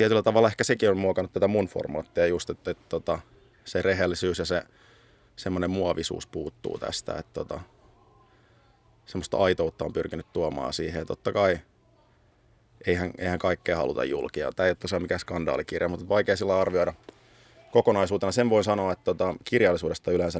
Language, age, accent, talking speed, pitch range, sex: Finnish, 30-49, native, 165 wpm, 90-105 Hz, male